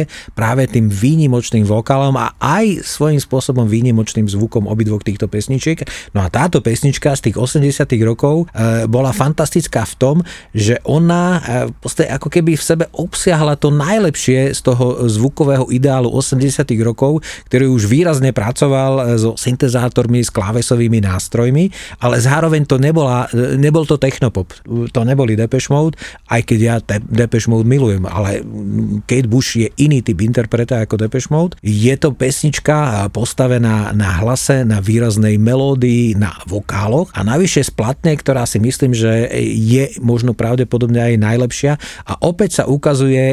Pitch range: 115-140 Hz